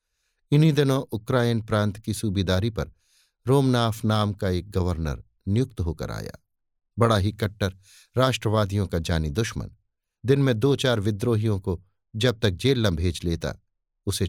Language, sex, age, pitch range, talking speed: Hindi, male, 50-69, 95-120 Hz, 145 wpm